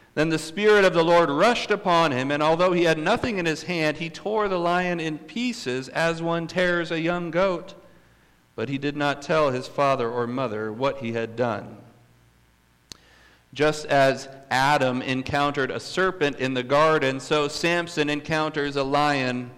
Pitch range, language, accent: 120-160 Hz, English, American